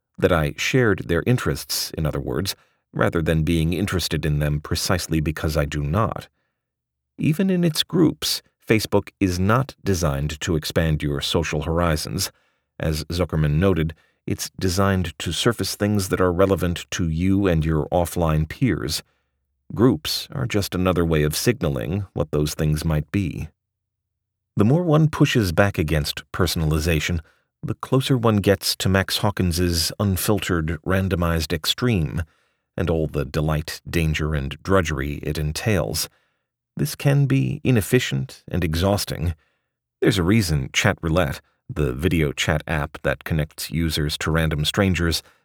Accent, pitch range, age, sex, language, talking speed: American, 80-100 Hz, 40-59, male, English, 145 wpm